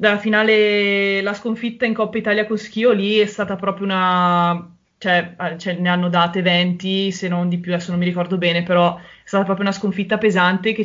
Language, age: Italian, 20-39